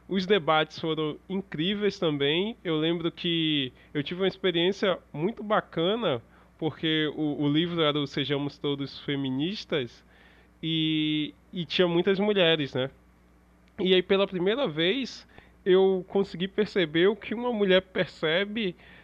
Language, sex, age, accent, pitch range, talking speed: Portuguese, male, 20-39, Brazilian, 150-195 Hz, 130 wpm